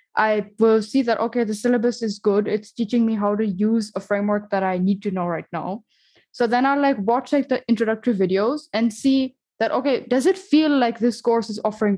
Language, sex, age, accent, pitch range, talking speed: English, female, 10-29, Indian, 205-255 Hz, 225 wpm